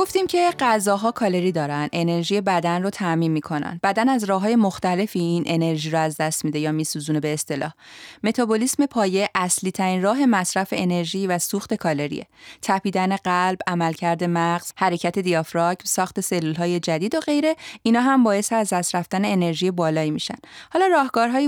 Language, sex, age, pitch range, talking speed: Persian, female, 30-49, 170-220 Hz, 160 wpm